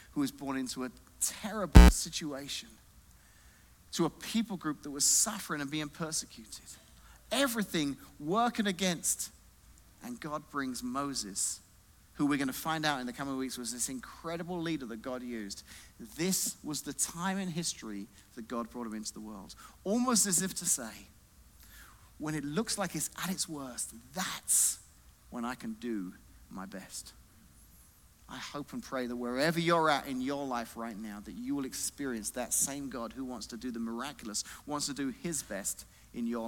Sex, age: male, 40-59